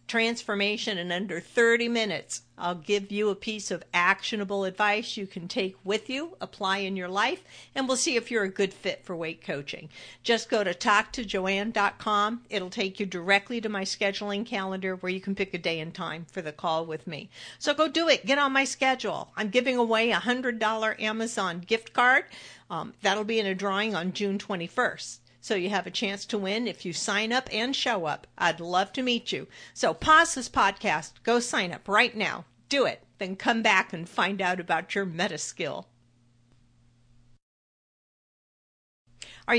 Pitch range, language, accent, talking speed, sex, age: 185-230 Hz, English, American, 190 wpm, female, 50-69